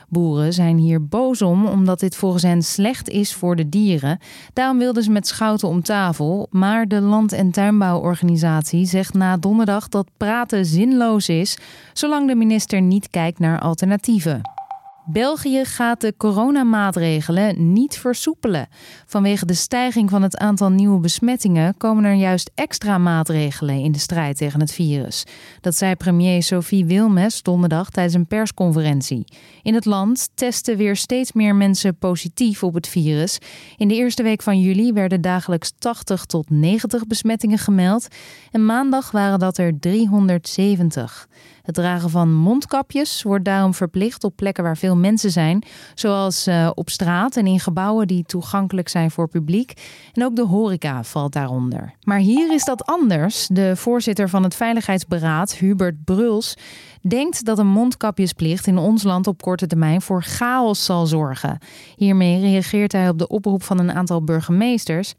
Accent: Dutch